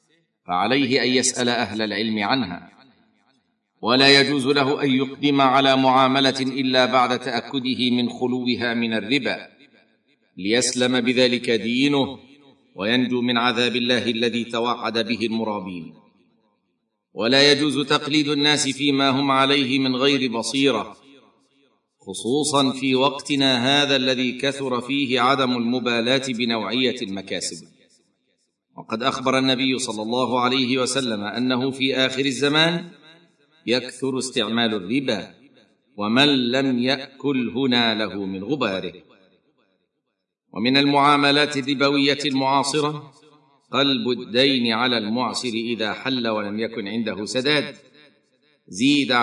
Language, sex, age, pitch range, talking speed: Arabic, male, 50-69, 120-140 Hz, 105 wpm